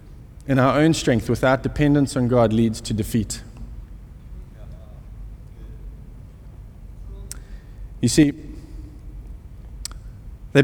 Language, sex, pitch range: English, male, 125-165 Hz